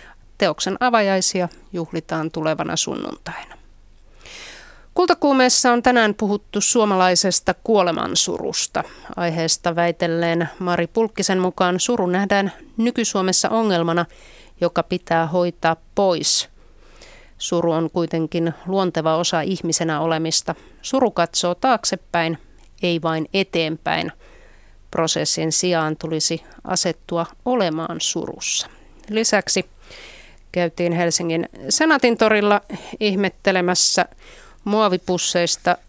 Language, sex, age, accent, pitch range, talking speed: Finnish, female, 30-49, native, 165-205 Hz, 80 wpm